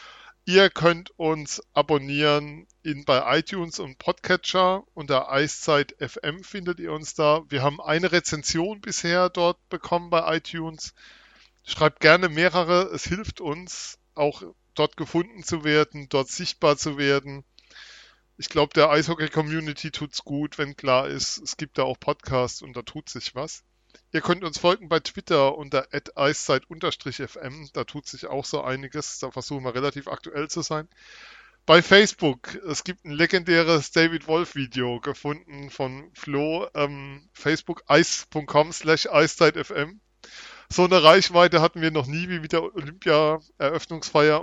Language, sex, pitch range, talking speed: German, male, 140-170 Hz, 140 wpm